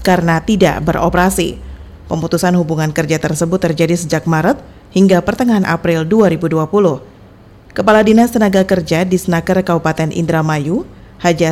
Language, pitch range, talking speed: Indonesian, 160-195 Hz, 115 wpm